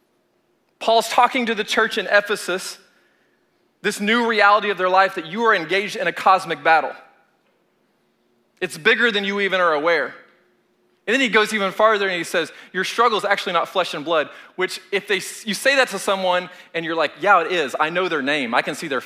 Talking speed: 210 wpm